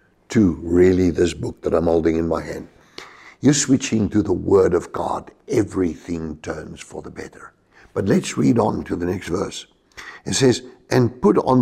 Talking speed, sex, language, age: 180 wpm, male, English, 60-79